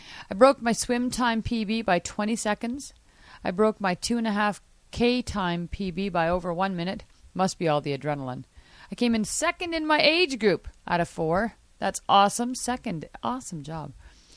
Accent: American